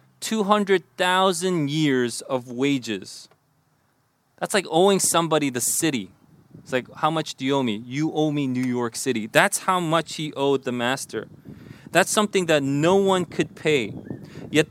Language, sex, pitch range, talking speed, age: English, male, 140-195 Hz, 160 wpm, 30-49